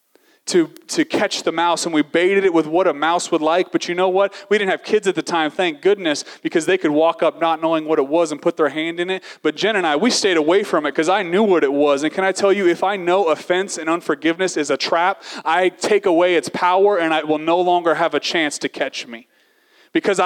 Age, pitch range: 30-49, 160-195 Hz